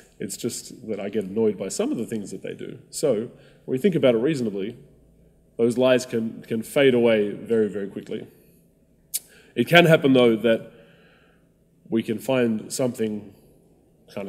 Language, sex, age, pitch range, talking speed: English, male, 20-39, 105-130 Hz, 170 wpm